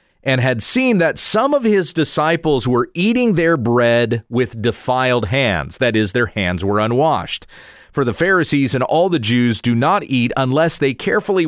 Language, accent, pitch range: English, American, 120-170 Hz